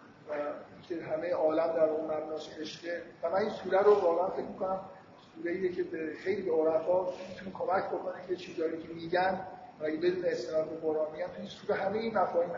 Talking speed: 175 wpm